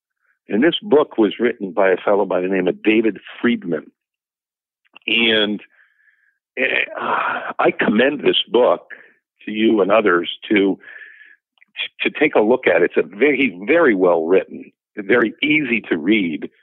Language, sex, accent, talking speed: English, male, American, 145 wpm